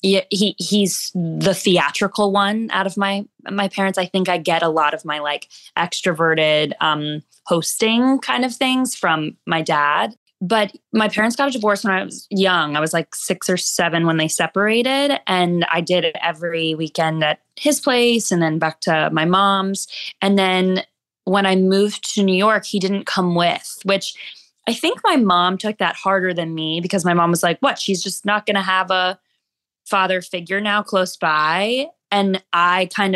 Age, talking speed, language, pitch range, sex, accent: 20-39, 190 wpm, English, 175-215 Hz, female, American